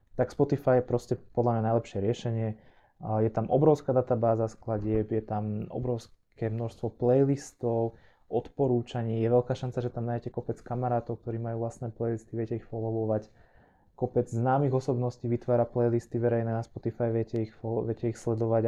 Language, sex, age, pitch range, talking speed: Slovak, male, 20-39, 110-125 Hz, 155 wpm